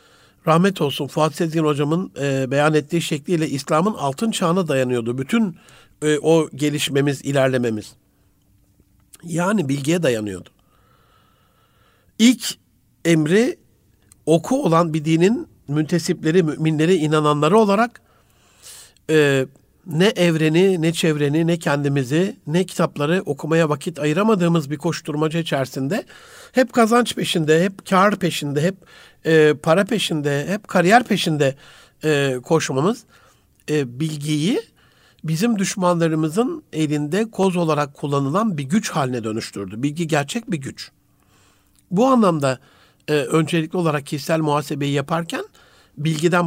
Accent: native